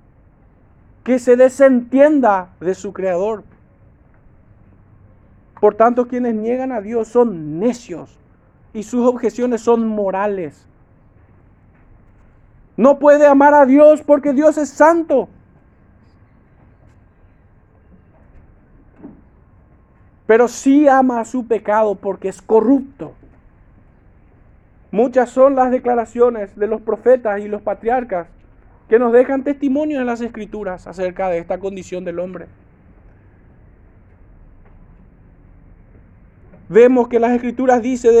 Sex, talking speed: male, 100 wpm